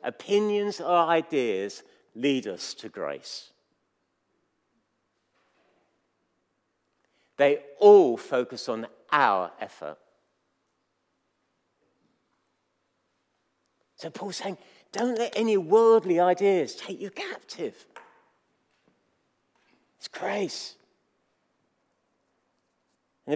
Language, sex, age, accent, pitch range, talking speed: English, male, 50-69, British, 180-235 Hz, 70 wpm